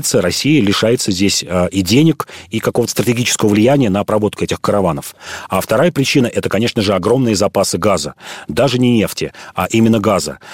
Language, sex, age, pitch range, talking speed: Russian, male, 40-59, 95-110 Hz, 170 wpm